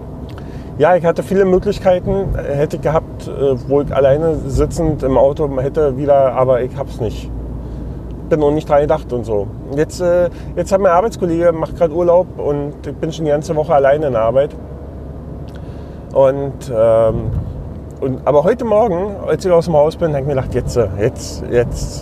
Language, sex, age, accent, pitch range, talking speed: German, male, 30-49, German, 110-160 Hz, 180 wpm